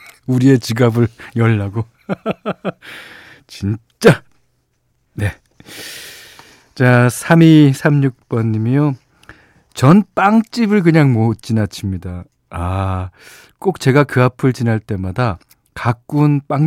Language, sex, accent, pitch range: Korean, male, native, 110-170 Hz